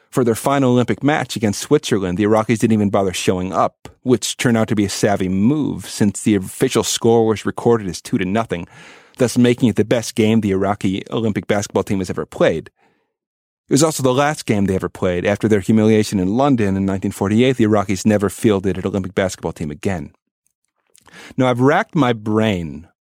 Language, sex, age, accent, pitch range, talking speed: English, male, 40-59, American, 95-120 Hz, 200 wpm